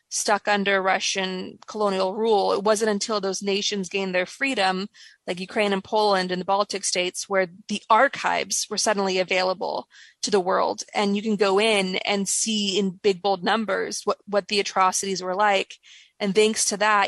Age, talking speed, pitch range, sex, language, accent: 20-39, 180 wpm, 190-210 Hz, female, English, American